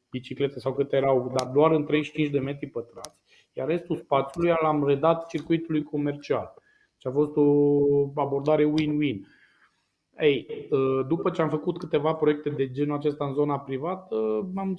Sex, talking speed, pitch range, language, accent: male, 155 wpm, 140-165 Hz, Romanian, native